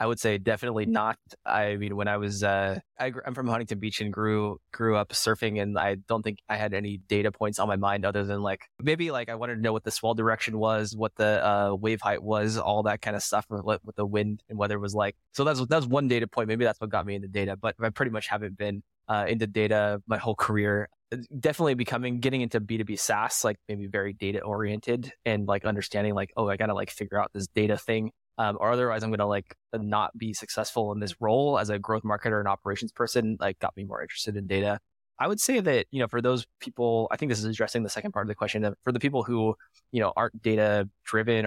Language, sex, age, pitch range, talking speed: English, male, 20-39, 100-115 Hz, 245 wpm